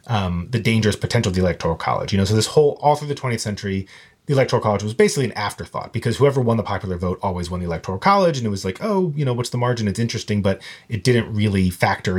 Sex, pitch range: male, 100-125 Hz